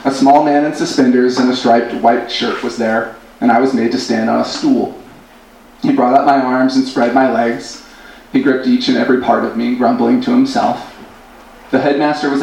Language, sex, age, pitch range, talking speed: English, male, 30-49, 120-185 Hz, 210 wpm